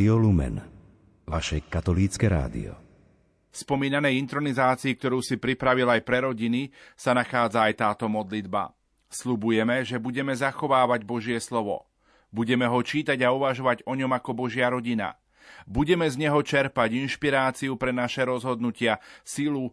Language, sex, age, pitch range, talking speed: Slovak, male, 40-59, 110-135 Hz, 120 wpm